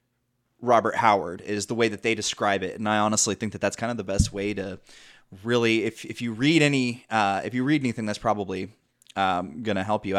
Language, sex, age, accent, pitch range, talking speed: English, male, 20-39, American, 110-145 Hz, 230 wpm